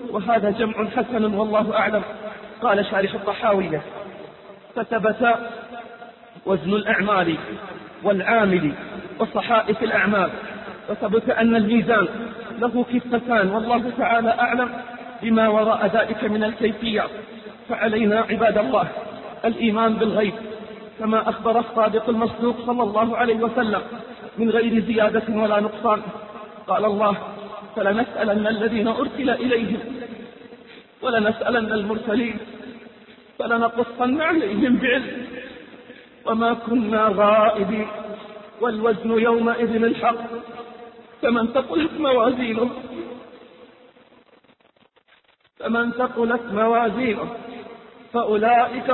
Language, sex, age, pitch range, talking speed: Arabic, male, 40-59, 215-240 Hz, 85 wpm